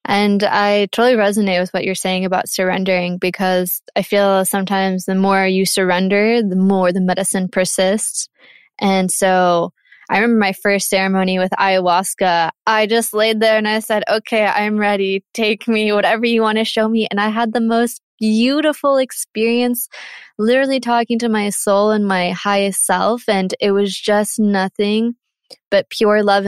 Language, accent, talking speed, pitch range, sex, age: English, American, 170 wpm, 190-220 Hz, female, 20-39